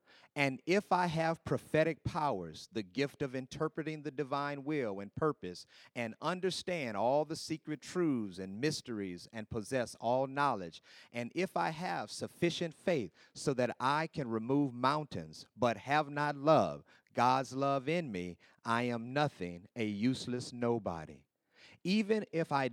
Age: 40-59